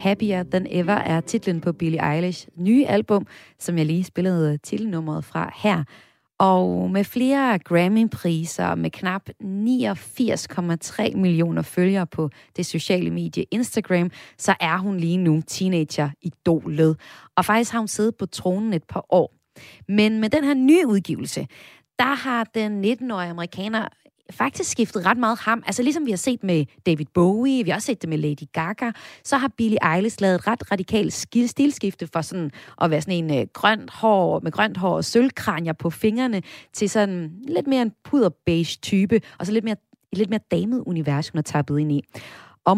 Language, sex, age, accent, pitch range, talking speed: Danish, female, 30-49, native, 165-220 Hz, 180 wpm